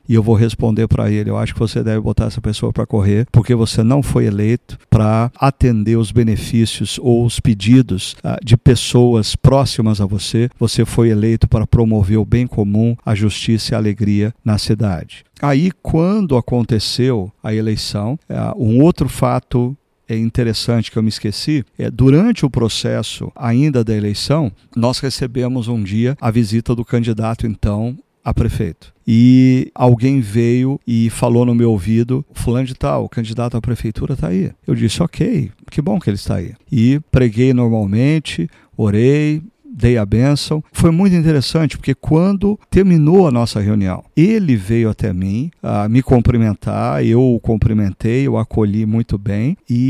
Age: 50-69